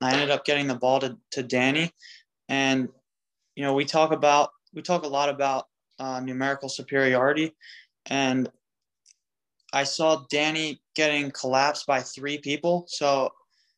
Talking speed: 145 wpm